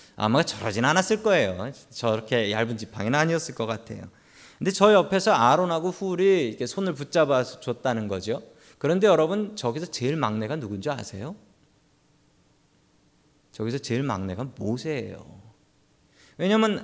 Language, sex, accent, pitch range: Korean, male, native, 115-185 Hz